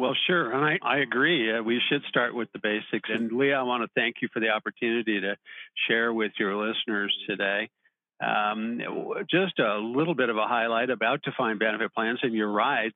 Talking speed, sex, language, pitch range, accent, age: 200 wpm, male, English, 110-150 Hz, American, 50-69